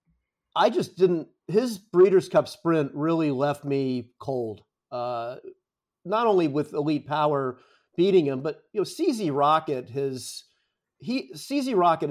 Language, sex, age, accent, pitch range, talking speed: English, male, 40-59, American, 145-190 Hz, 135 wpm